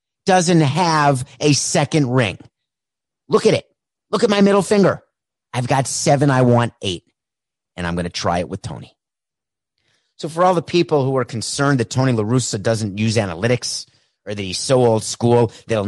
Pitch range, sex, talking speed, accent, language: 110-145 Hz, male, 180 wpm, American, English